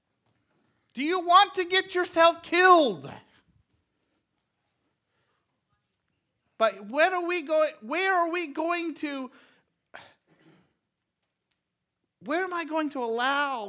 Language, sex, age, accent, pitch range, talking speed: English, male, 50-69, American, 210-330 Hz, 100 wpm